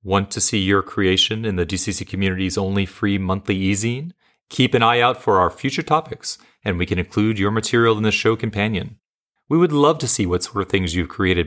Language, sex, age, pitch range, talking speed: English, male, 30-49, 90-110 Hz, 220 wpm